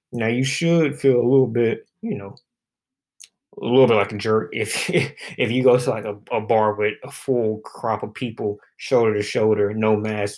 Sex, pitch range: male, 105-130 Hz